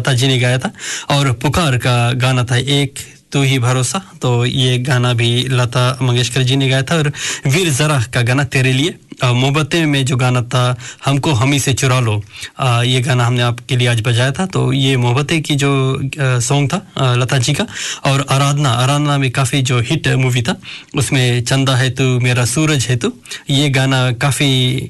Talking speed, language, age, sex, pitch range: 200 wpm, Hindi, 20-39, male, 125-140 Hz